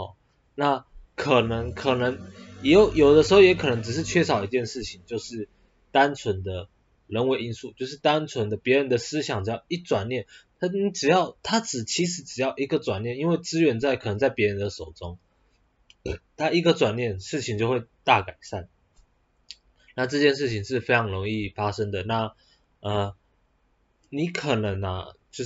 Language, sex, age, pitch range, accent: Chinese, male, 20-39, 100-140 Hz, native